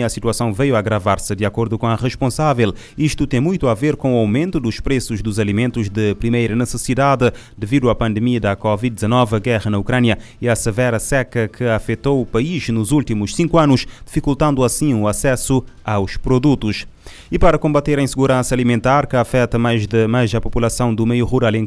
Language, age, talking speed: Portuguese, 20-39, 190 wpm